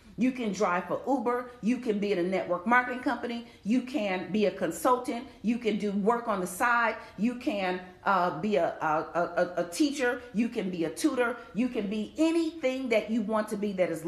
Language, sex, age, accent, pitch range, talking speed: English, female, 40-59, American, 205-260 Hz, 215 wpm